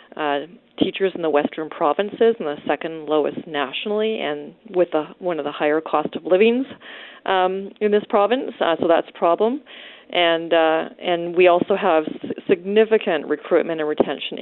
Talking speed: 170 wpm